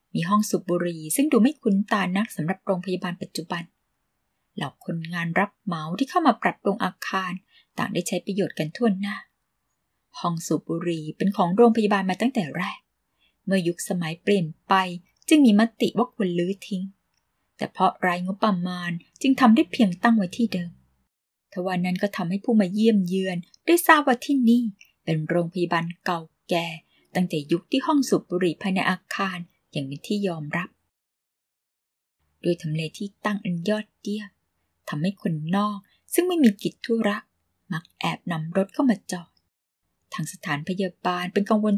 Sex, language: female, Thai